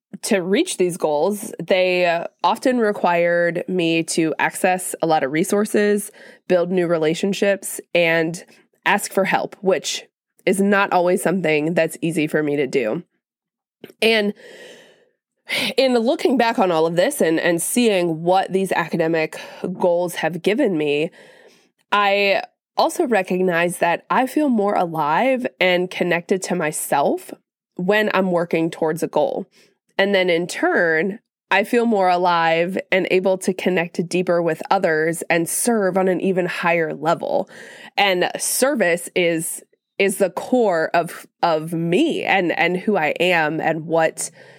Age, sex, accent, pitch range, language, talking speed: 20-39, female, American, 170-220 Hz, English, 145 wpm